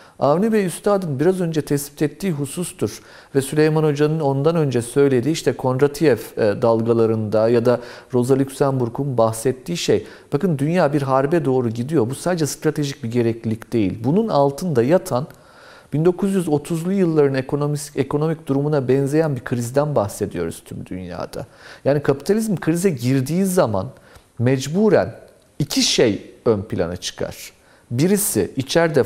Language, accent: Turkish, native